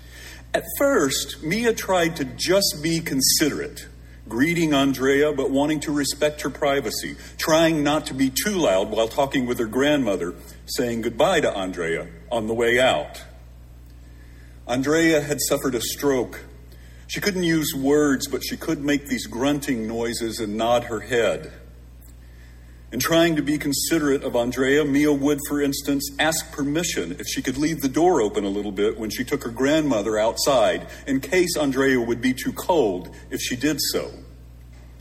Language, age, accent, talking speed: English, 50-69, American, 165 wpm